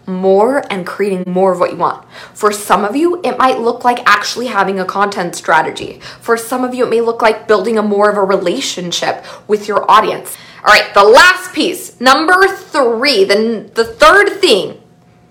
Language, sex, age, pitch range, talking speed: English, female, 20-39, 195-300 Hz, 190 wpm